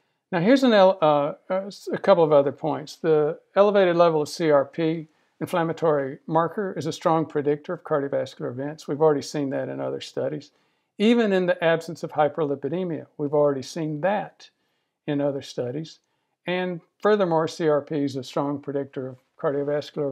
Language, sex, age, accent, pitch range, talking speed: English, male, 60-79, American, 140-165 Hz, 150 wpm